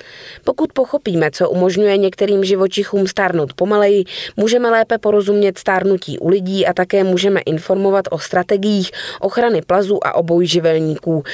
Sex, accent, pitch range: female, native, 170-215 Hz